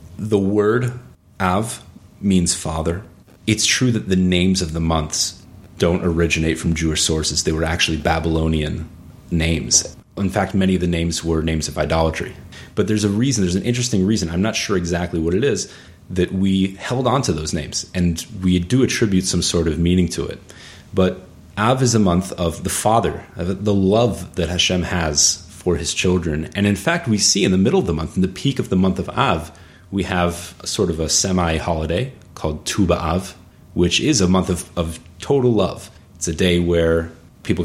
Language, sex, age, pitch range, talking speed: English, male, 30-49, 80-95 Hz, 195 wpm